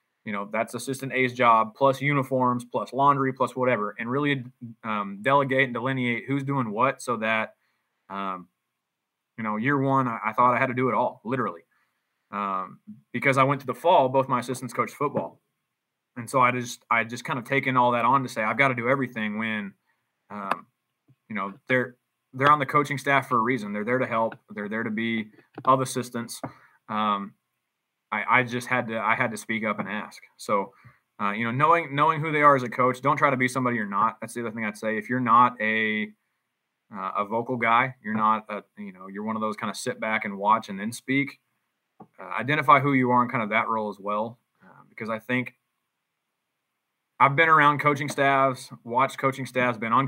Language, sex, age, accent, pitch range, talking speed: English, male, 20-39, American, 110-135 Hz, 215 wpm